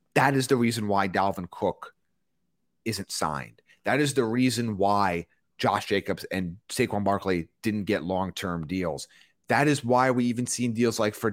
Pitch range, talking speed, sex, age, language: 100-145 Hz, 175 wpm, male, 30-49, English